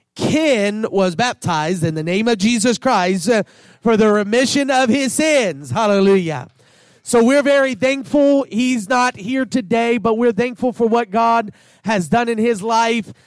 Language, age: English, 30-49